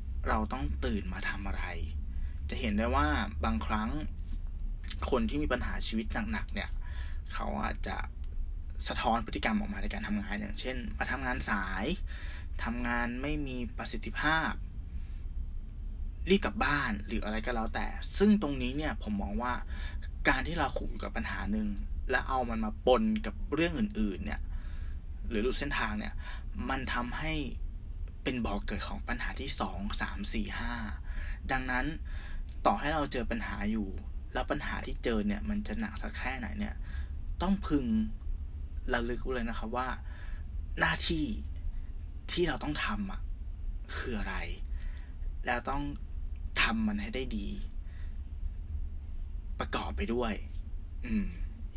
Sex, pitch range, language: male, 75-105 Hz, Thai